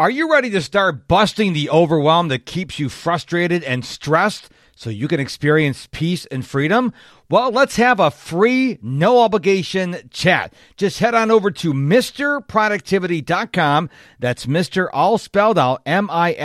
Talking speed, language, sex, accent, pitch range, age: 155 wpm, English, male, American, 140-205 Hz, 50-69